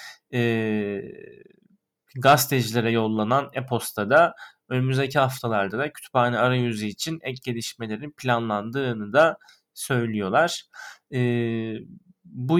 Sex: male